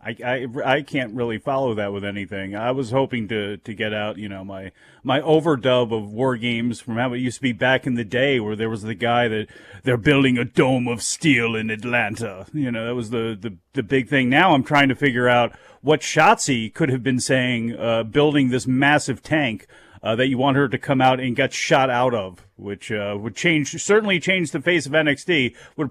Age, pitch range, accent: 40-59, 120-145 Hz, American